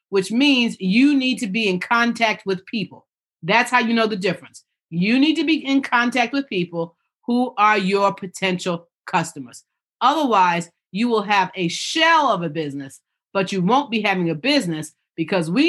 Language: English